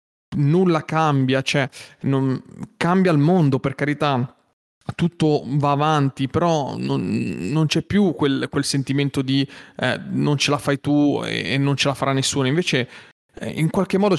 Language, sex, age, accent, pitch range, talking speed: Italian, male, 30-49, native, 130-155 Hz, 165 wpm